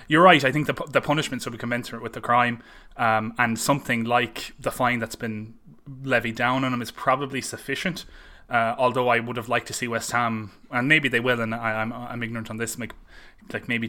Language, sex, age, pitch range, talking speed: English, male, 20-39, 115-135 Hz, 225 wpm